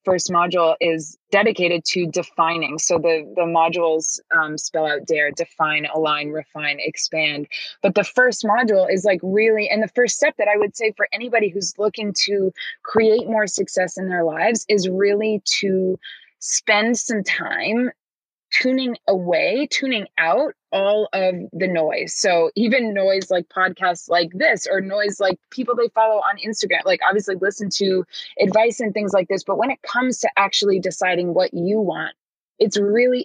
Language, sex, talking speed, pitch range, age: English, female, 170 wpm, 180-215 Hz, 20-39